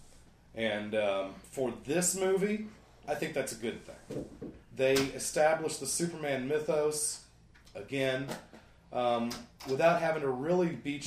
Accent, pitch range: American, 110-155 Hz